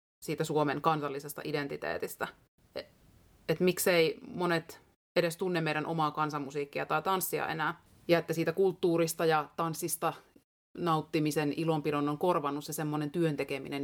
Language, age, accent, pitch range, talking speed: Finnish, 30-49, native, 150-185 Hz, 125 wpm